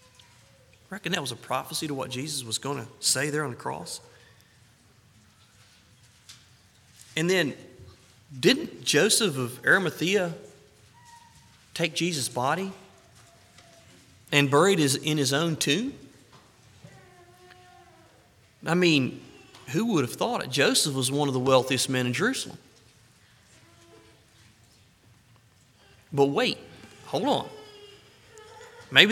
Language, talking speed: English, 110 wpm